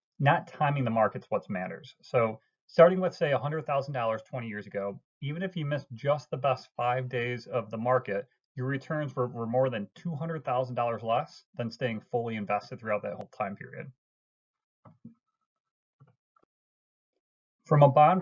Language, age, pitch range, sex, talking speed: English, 30-49, 120-150 Hz, male, 170 wpm